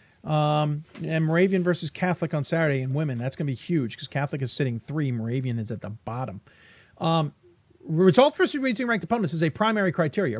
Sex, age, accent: male, 40-59, American